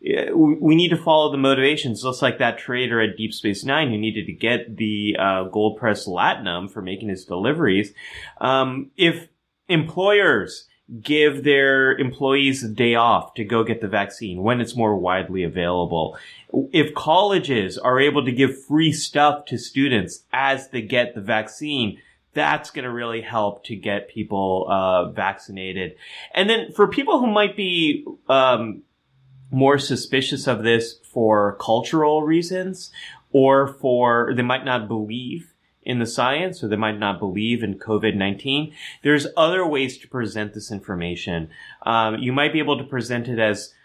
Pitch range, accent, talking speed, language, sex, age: 105-140 Hz, American, 165 wpm, English, male, 30-49